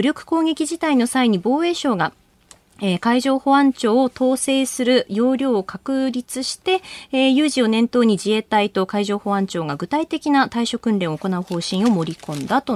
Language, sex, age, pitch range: Japanese, female, 30-49, 195-270 Hz